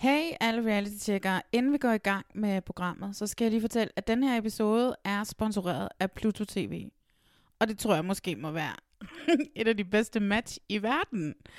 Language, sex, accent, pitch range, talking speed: Danish, female, native, 175-225 Hz, 195 wpm